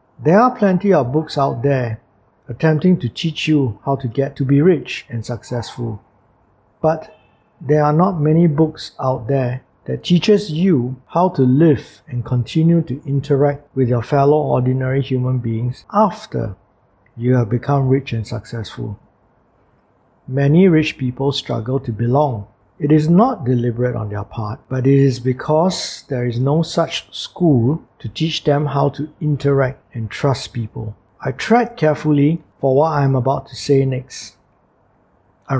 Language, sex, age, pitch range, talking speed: English, male, 50-69, 120-150 Hz, 155 wpm